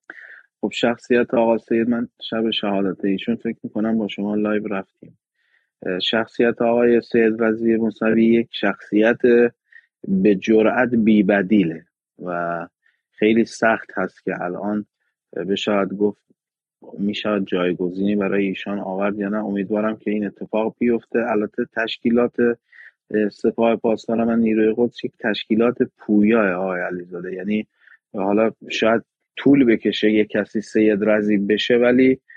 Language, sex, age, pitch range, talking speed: Persian, male, 30-49, 105-120 Hz, 120 wpm